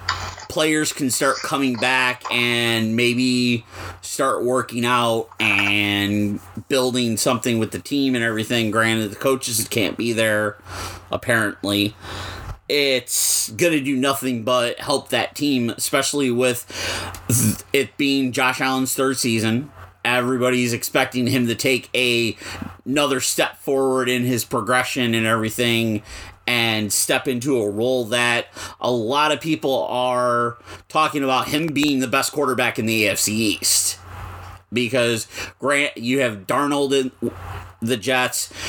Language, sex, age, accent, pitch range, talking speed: English, male, 30-49, American, 110-135 Hz, 130 wpm